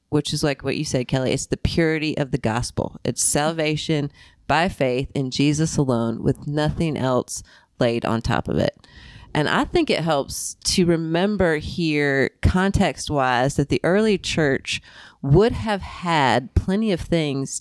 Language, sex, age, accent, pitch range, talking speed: English, female, 30-49, American, 140-175 Hz, 165 wpm